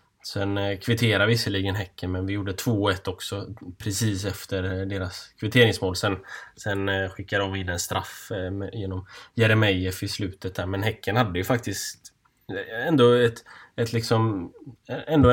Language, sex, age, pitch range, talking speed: Swedish, male, 10-29, 95-115 Hz, 140 wpm